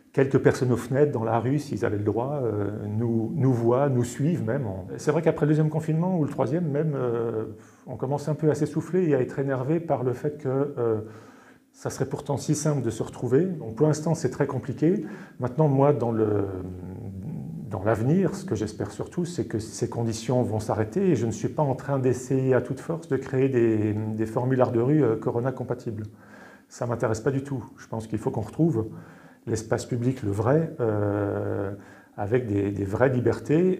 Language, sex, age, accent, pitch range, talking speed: French, male, 40-59, French, 110-145 Hz, 205 wpm